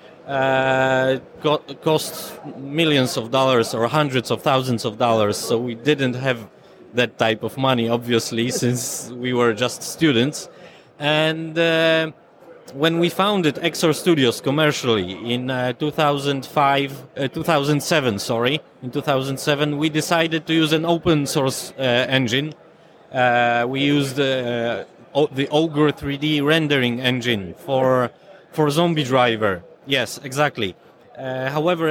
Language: German